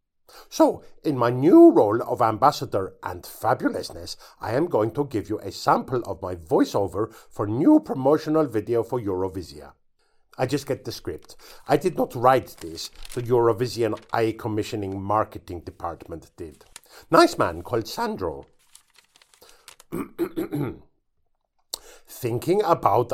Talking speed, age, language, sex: 125 wpm, 50-69, English, male